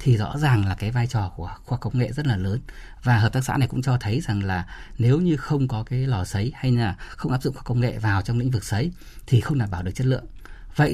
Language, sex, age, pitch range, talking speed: Vietnamese, male, 20-39, 110-145 Hz, 285 wpm